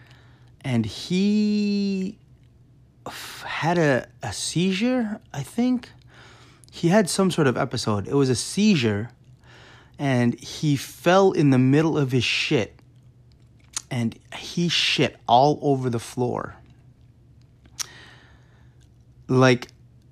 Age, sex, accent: 20-39, male, American